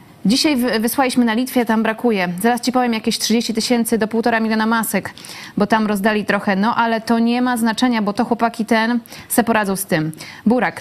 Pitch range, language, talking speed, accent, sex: 210-255 Hz, Polish, 195 wpm, native, female